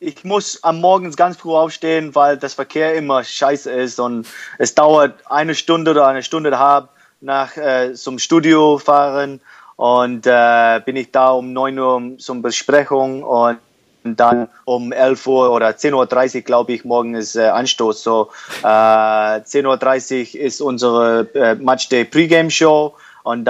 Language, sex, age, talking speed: German, male, 20-39, 160 wpm